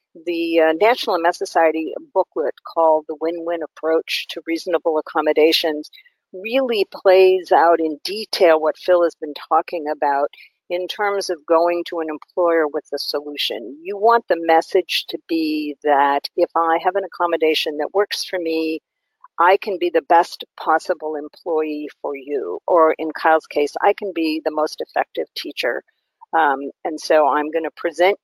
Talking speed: 160 wpm